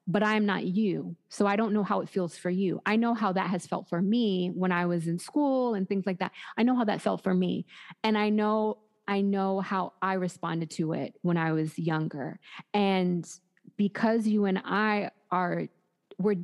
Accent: American